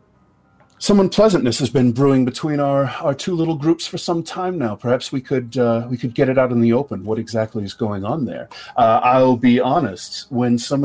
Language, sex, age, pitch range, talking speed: English, male, 40-59, 110-140 Hz, 215 wpm